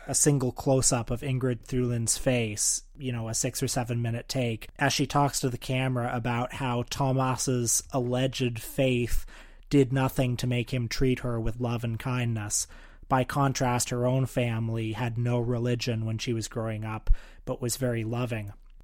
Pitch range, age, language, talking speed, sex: 120-130 Hz, 30-49, English, 170 wpm, male